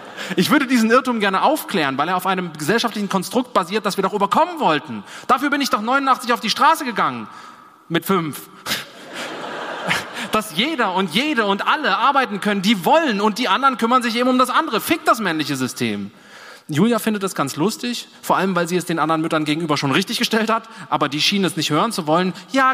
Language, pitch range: German, 155-215 Hz